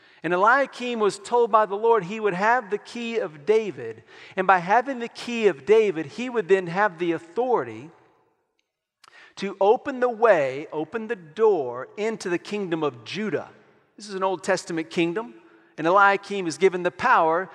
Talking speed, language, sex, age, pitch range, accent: 175 wpm, English, male, 40-59, 145-200 Hz, American